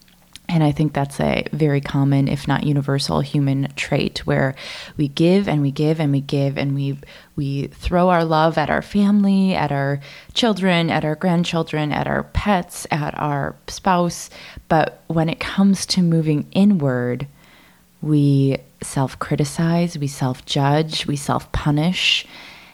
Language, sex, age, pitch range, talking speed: English, female, 20-39, 140-170 Hz, 145 wpm